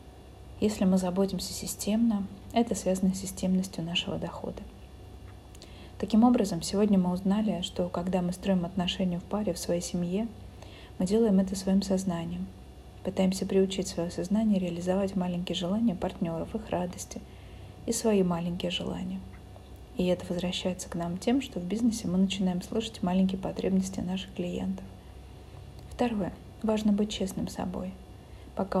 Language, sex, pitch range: Russian, female, 170-205 Hz